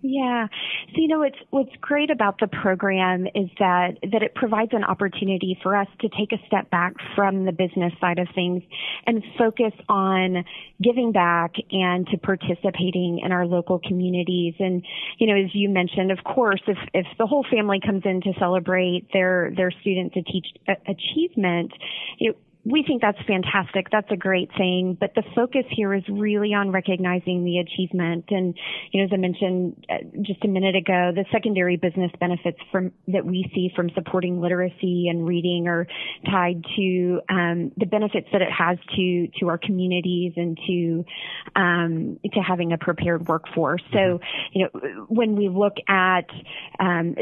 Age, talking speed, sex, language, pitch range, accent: 30-49, 175 wpm, female, English, 180-200 Hz, American